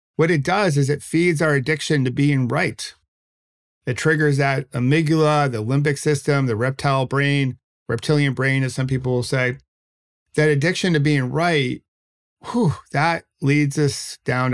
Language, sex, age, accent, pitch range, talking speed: English, male, 50-69, American, 115-150 Hz, 155 wpm